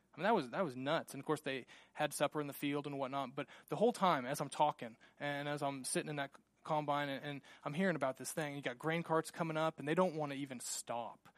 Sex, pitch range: male, 140-185 Hz